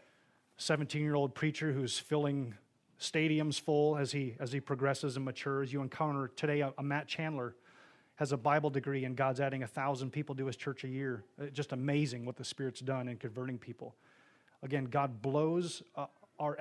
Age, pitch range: 30-49, 130-150 Hz